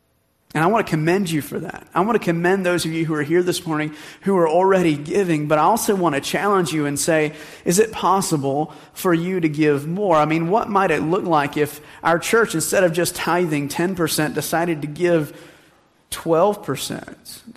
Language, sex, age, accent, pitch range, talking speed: English, male, 30-49, American, 140-175 Hz, 205 wpm